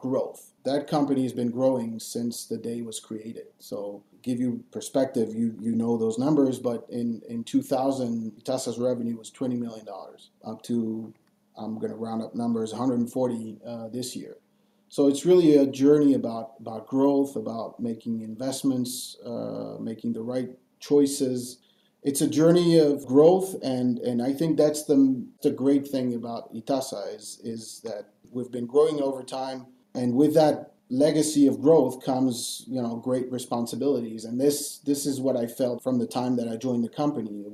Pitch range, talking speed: 115-140 Hz, 175 wpm